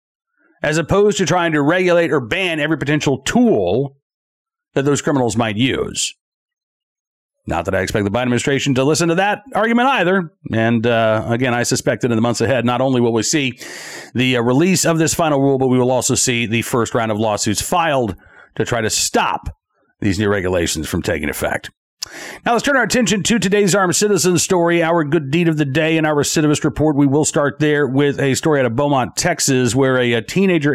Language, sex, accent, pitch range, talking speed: English, male, American, 130-170 Hz, 205 wpm